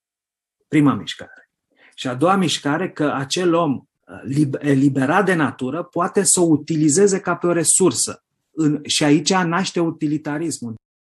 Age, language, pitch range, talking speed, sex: 30-49, Polish, 130-180 Hz, 130 wpm, male